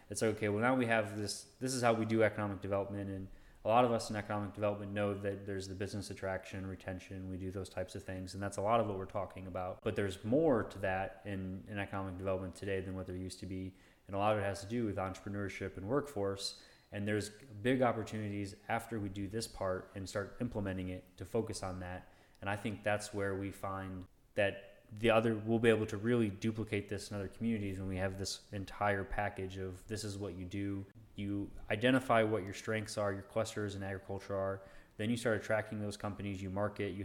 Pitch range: 95-110 Hz